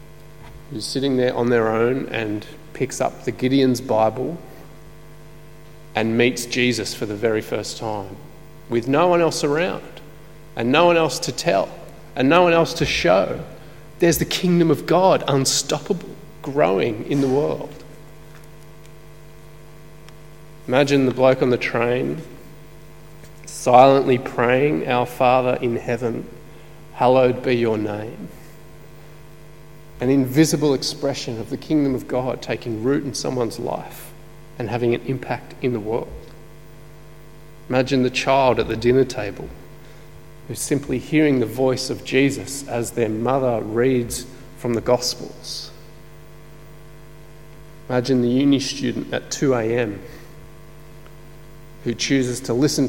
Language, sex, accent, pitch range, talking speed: English, male, Australian, 125-155 Hz, 130 wpm